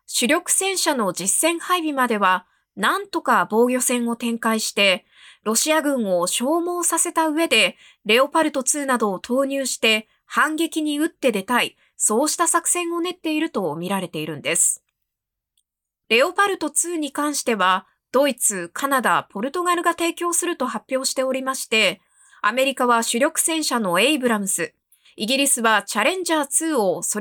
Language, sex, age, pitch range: Japanese, female, 20-39, 215-315 Hz